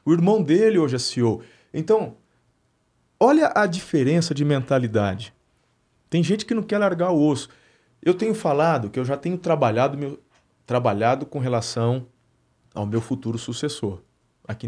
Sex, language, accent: male, Portuguese, Brazilian